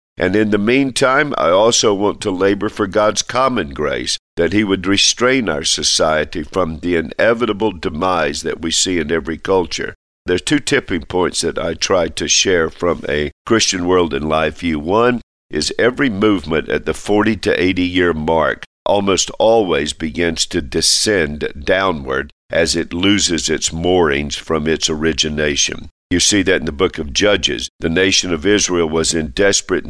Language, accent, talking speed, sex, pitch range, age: English, American, 170 wpm, male, 80-100 Hz, 50-69